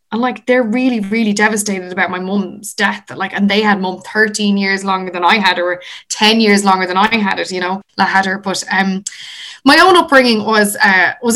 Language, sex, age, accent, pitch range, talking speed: English, female, 20-39, Irish, 180-210 Hz, 225 wpm